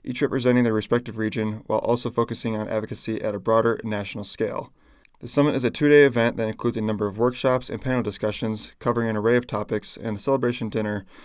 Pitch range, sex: 110-125 Hz, male